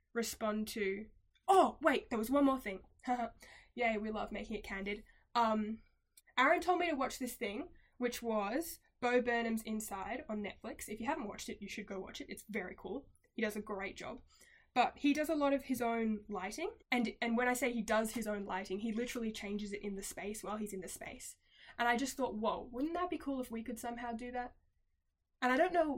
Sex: female